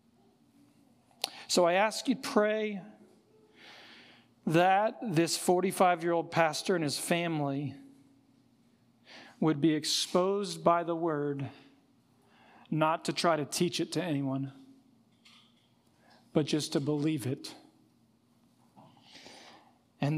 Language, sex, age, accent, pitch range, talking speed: English, male, 40-59, American, 135-170 Hz, 100 wpm